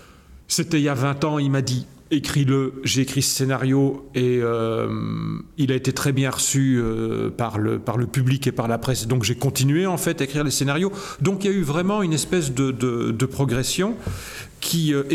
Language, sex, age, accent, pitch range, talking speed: French, male, 40-59, French, 125-160 Hz, 220 wpm